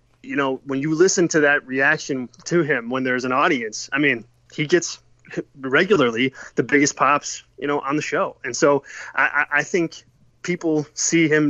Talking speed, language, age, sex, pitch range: 185 wpm, English, 20-39, male, 130-155 Hz